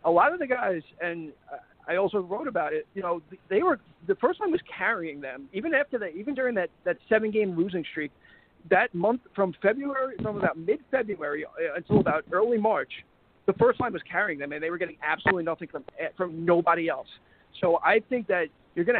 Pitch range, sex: 160-195 Hz, male